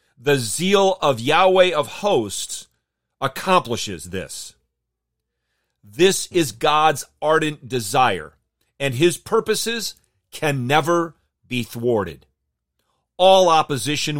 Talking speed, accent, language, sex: 95 wpm, American, English, male